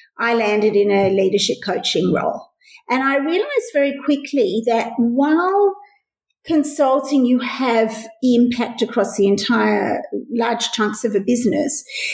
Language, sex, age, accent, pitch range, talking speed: English, female, 50-69, Australian, 210-270 Hz, 130 wpm